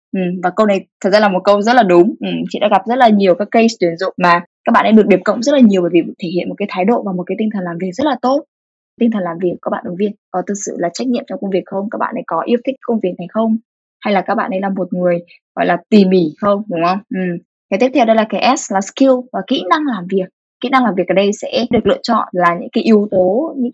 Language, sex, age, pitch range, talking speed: Vietnamese, female, 10-29, 185-245 Hz, 315 wpm